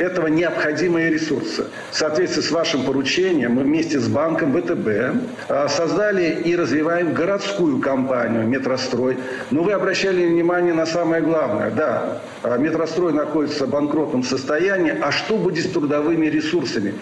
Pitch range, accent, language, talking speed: 150-200 Hz, native, Russian, 135 wpm